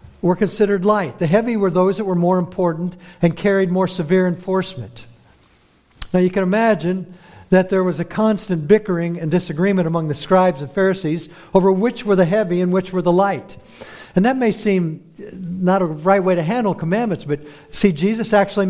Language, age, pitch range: English, 60-79, 155-195 Hz